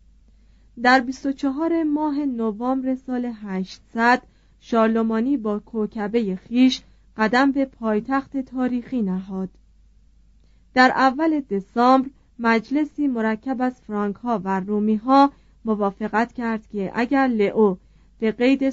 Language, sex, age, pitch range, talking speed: Persian, female, 30-49, 205-260 Hz, 105 wpm